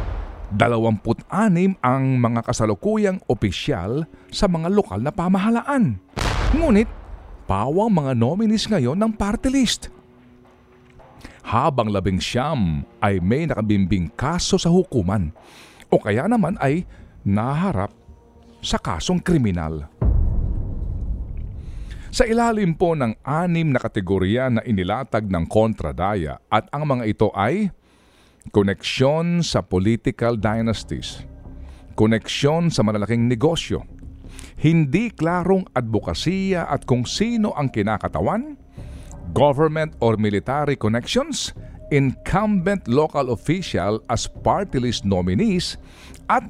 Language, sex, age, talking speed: Filipino, male, 50-69, 100 wpm